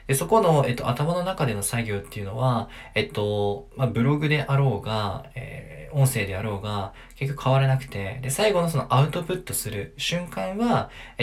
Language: Japanese